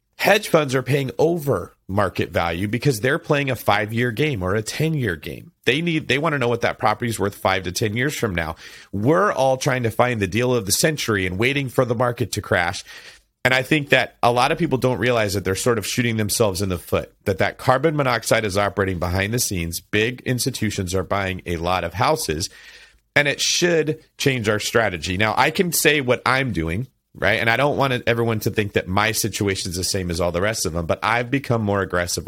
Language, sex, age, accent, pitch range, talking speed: English, male, 40-59, American, 100-130 Hz, 230 wpm